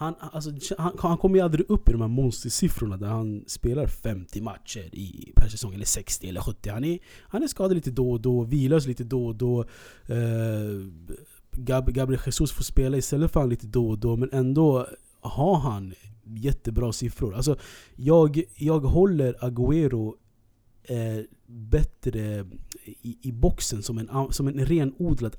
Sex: male